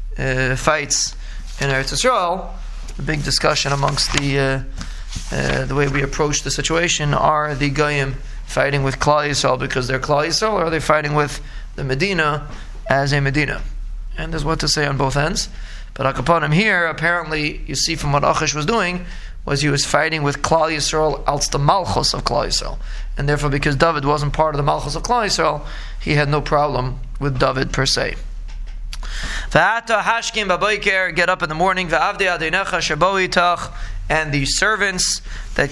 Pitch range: 145-180 Hz